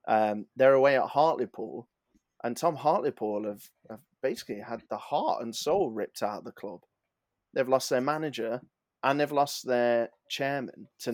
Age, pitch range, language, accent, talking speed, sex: 20-39, 115-130 Hz, English, British, 165 wpm, male